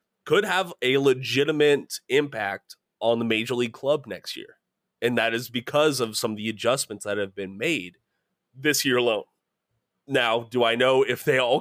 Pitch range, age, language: 110-155 Hz, 30-49, English